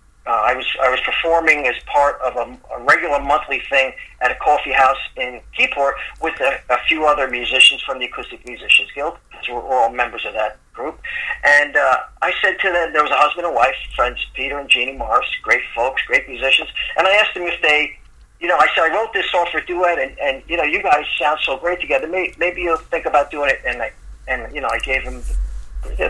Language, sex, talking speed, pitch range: English, male, 230 wpm, 130-170 Hz